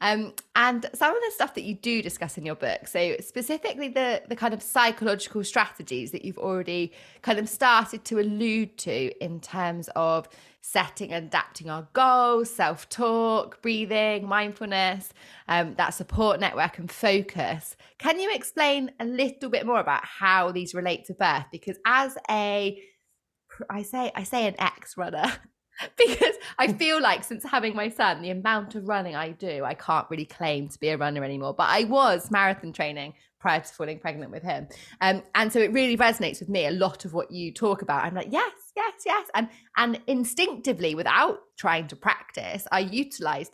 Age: 20-39